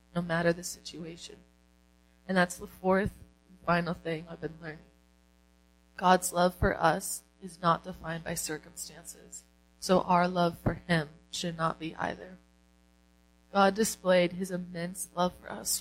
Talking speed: 150 wpm